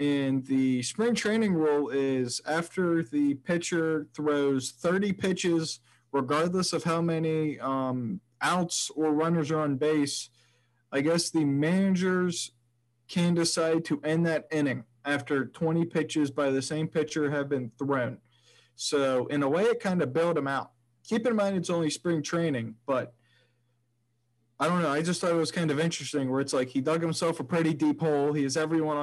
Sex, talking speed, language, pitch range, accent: male, 175 wpm, English, 130-160 Hz, American